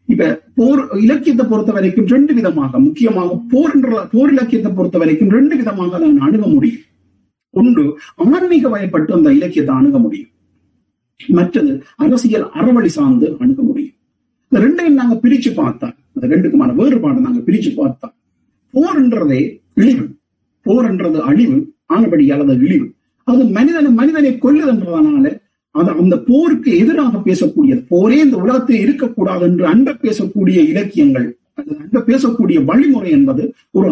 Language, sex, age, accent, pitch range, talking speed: Tamil, male, 50-69, native, 235-290 Hz, 120 wpm